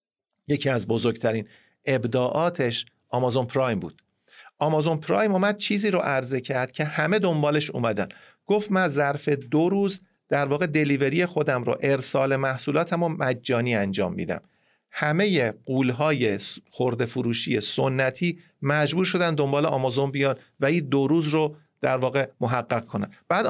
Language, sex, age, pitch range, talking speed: Persian, male, 50-69, 130-175 Hz, 140 wpm